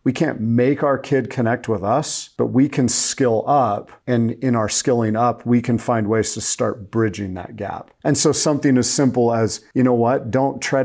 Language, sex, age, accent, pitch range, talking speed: English, male, 40-59, American, 110-130 Hz, 210 wpm